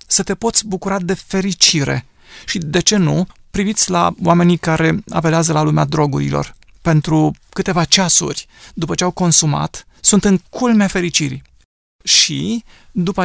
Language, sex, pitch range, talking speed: Romanian, male, 160-190 Hz, 140 wpm